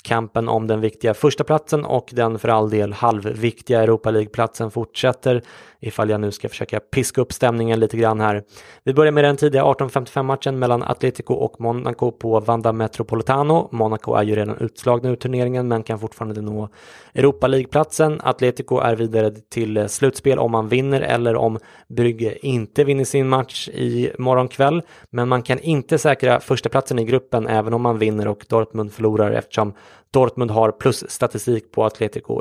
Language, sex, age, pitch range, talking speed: English, male, 20-39, 110-130 Hz, 170 wpm